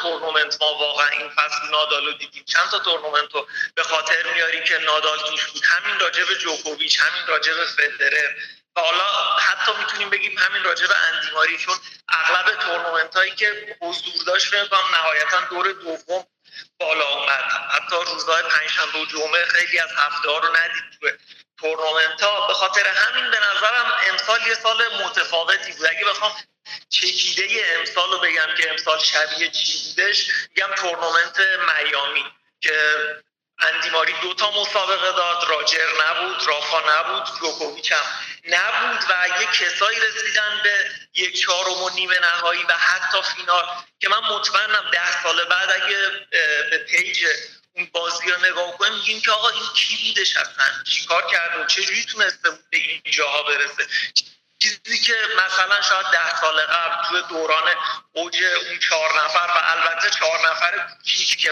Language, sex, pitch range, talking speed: Persian, male, 160-210 Hz, 150 wpm